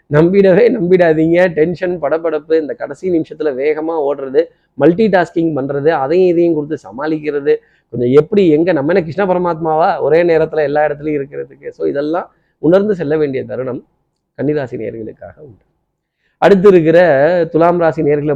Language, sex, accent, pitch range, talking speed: Tamil, male, native, 145-190 Hz, 135 wpm